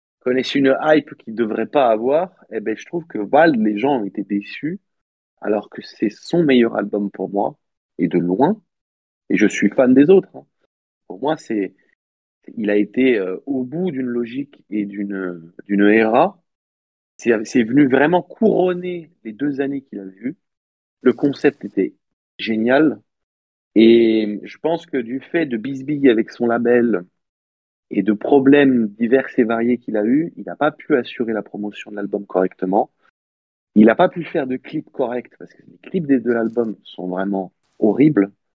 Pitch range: 100-135 Hz